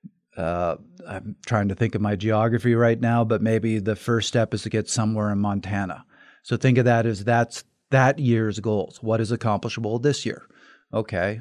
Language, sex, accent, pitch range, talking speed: English, male, American, 105-115 Hz, 190 wpm